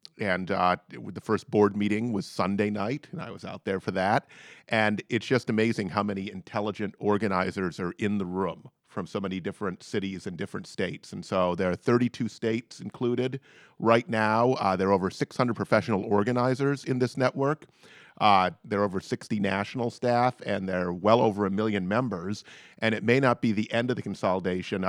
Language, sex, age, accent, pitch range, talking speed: English, male, 40-59, American, 95-115 Hz, 195 wpm